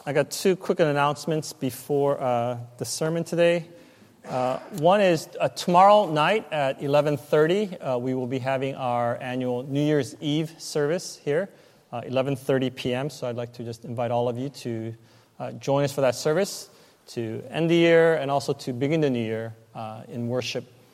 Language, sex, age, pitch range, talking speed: English, male, 30-49, 125-155 Hz, 180 wpm